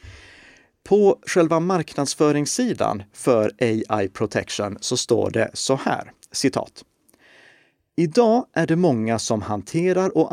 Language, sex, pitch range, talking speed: Swedish, male, 105-140 Hz, 110 wpm